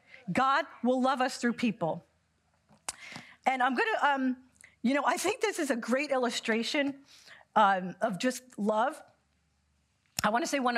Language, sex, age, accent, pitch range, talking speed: English, female, 40-59, American, 200-255 Hz, 155 wpm